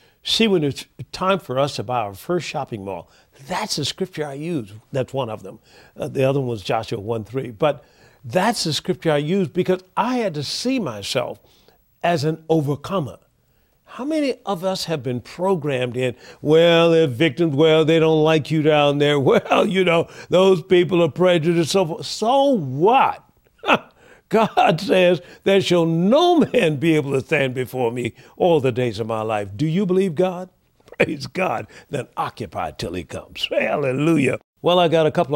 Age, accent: 50-69, American